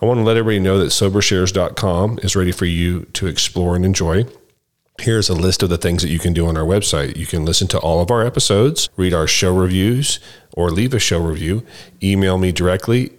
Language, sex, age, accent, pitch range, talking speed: English, male, 40-59, American, 85-105 Hz, 225 wpm